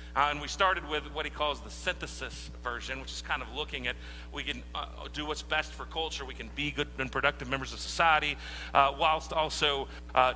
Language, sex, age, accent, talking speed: English, male, 40-59, American, 220 wpm